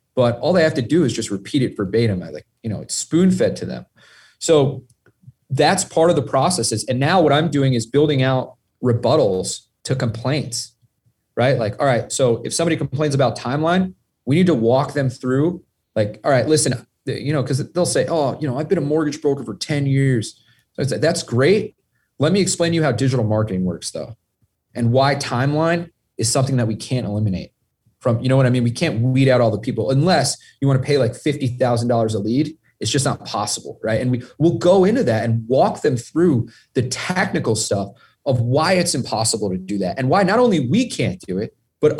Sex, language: male, English